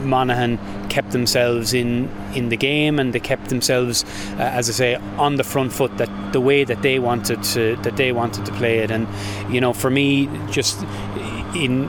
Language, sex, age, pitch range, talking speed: English, male, 20-39, 110-135 Hz, 195 wpm